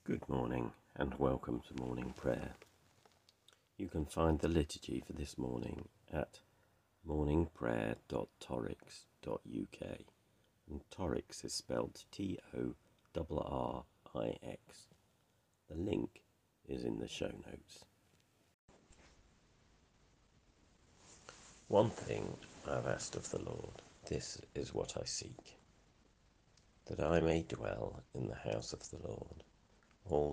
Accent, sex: British, male